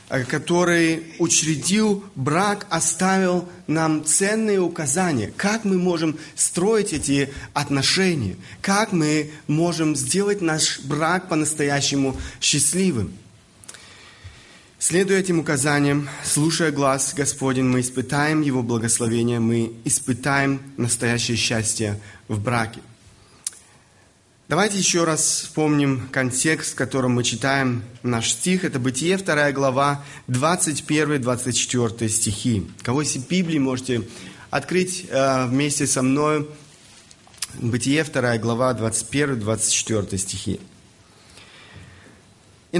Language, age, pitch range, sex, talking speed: Russian, 30-49, 120-160 Hz, male, 95 wpm